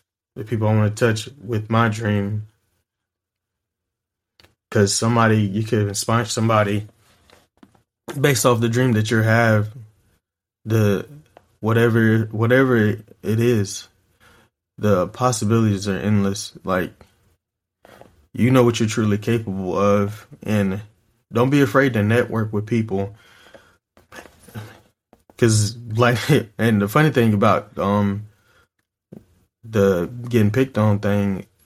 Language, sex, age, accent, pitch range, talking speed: English, male, 20-39, American, 100-115 Hz, 115 wpm